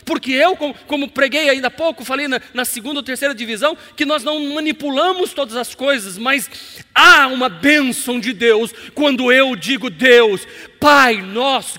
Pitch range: 245-320 Hz